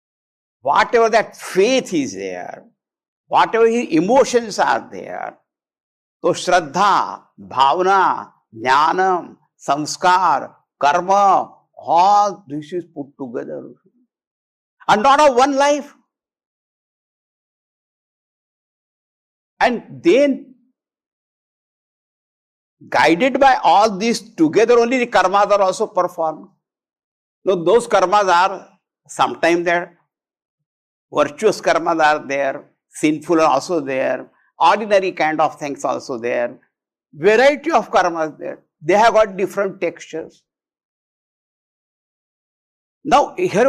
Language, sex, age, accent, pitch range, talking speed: English, male, 60-79, Indian, 150-240 Hz, 95 wpm